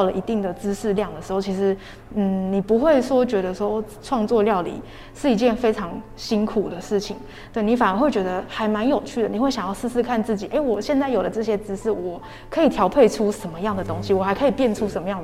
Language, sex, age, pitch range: Chinese, female, 20-39, 190-225 Hz